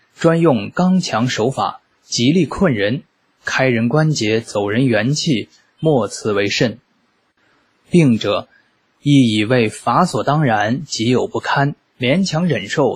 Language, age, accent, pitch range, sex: Chinese, 20-39, native, 115-155 Hz, male